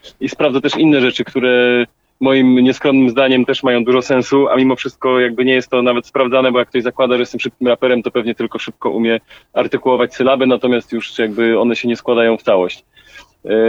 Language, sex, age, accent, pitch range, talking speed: Polish, male, 30-49, native, 120-135 Hz, 205 wpm